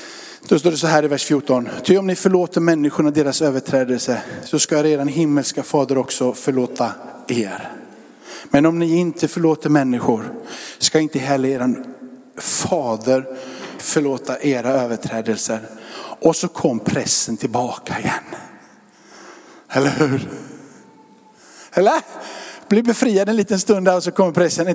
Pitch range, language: 145-200 Hz, Swedish